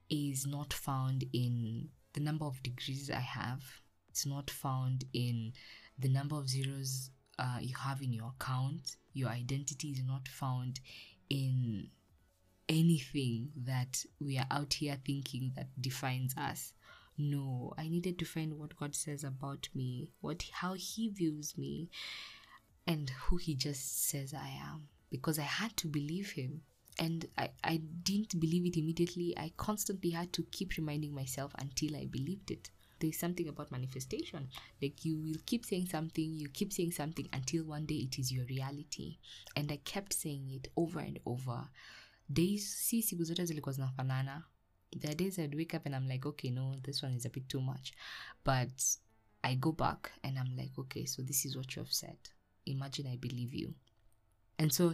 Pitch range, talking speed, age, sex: 130-160 Hz, 170 wpm, 20-39, female